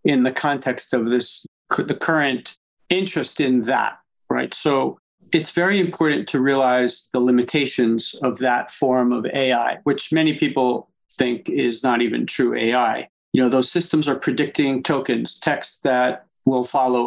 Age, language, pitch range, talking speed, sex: 50-69, English, 125-155 Hz, 155 wpm, male